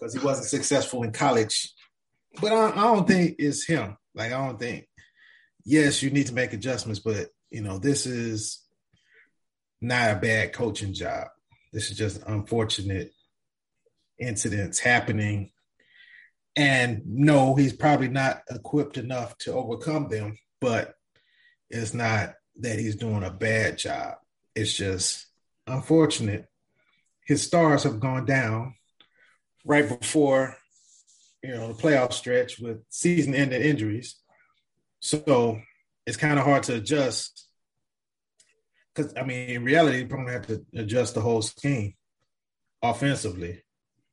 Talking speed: 135 wpm